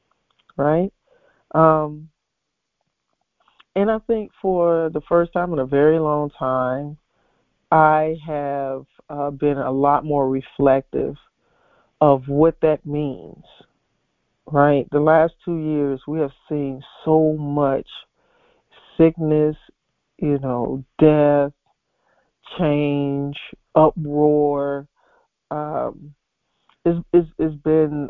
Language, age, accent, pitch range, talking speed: English, 40-59, American, 140-165 Hz, 100 wpm